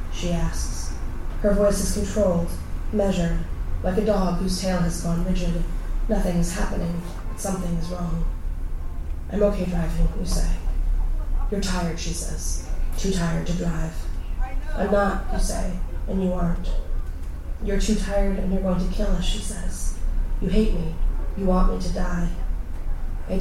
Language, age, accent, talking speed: English, 20-39, American, 155 wpm